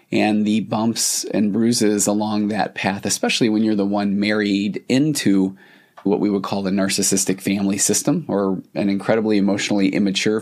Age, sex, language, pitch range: 30-49, male, English, 100-115 Hz